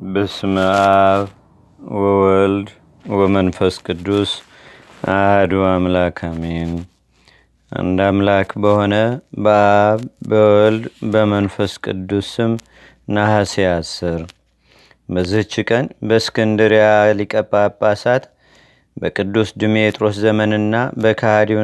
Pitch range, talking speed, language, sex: 100-115 Hz, 60 wpm, Amharic, male